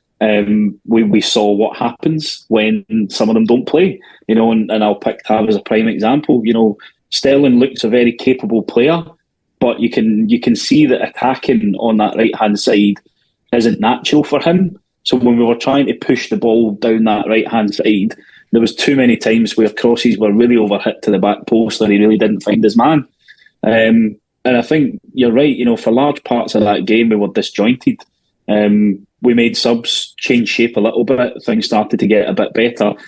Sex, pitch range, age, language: male, 105-120 Hz, 20-39, English